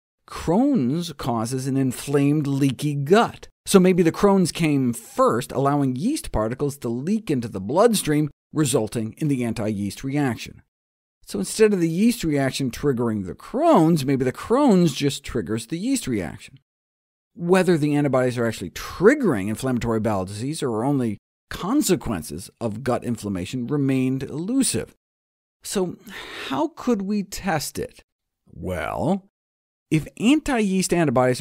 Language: English